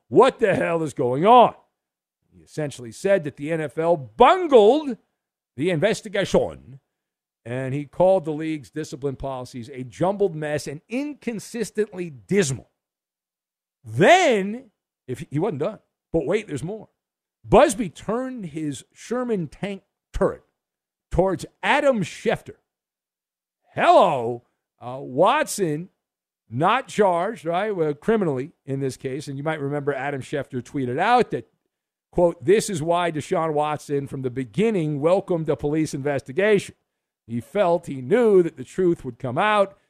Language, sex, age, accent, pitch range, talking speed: English, male, 50-69, American, 140-200 Hz, 135 wpm